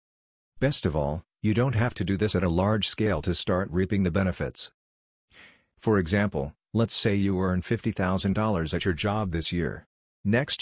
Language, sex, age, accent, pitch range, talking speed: English, male, 50-69, American, 90-105 Hz, 175 wpm